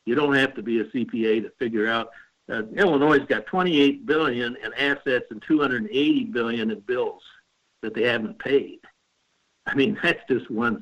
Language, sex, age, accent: English, male, 60-79, American